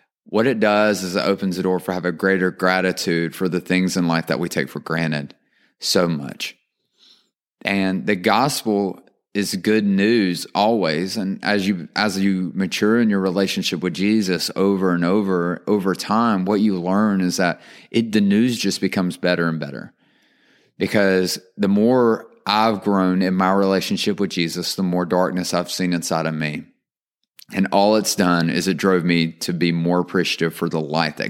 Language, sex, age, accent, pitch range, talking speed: English, male, 30-49, American, 85-100 Hz, 180 wpm